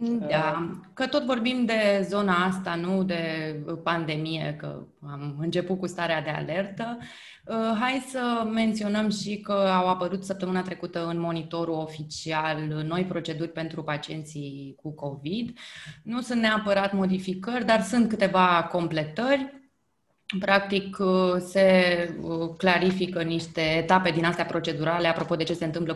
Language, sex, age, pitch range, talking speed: Romanian, female, 20-39, 160-210 Hz, 130 wpm